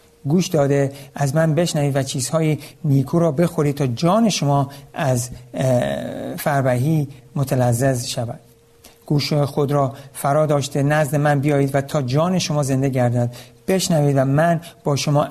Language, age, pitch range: Persian, 60-79, 125-150 Hz